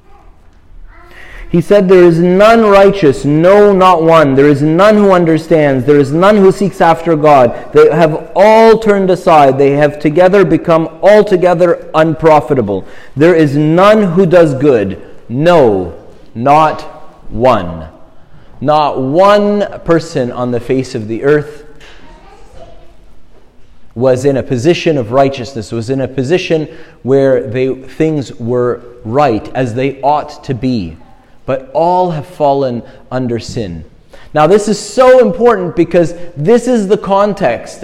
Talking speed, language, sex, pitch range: 135 wpm, English, male, 145-195 Hz